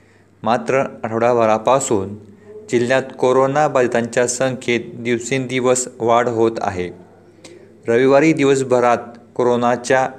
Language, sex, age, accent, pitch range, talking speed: Marathi, male, 40-59, native, 115-130 Hz, 70 wpm